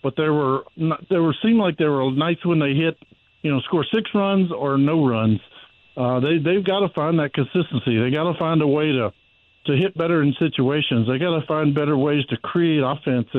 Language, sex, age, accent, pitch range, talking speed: English, male, 50-69, American, 130-155 Hz, 230 wpm